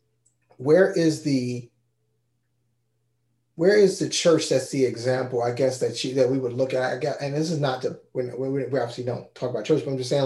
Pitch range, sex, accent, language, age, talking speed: 130-155 Hz, male, American, English, 30-49, 220 wpm